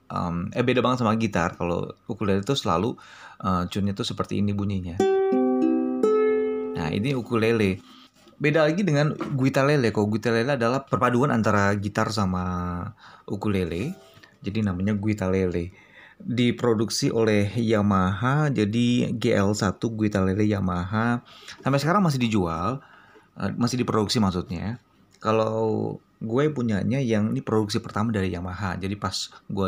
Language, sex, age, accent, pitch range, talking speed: Indonesian, male, 30-49, native, 100-125 Hz, 130 wpm